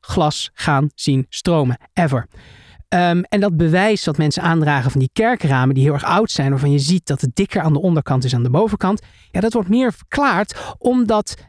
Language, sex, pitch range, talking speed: Dutch, male, 150-235 Hz, 205 wpm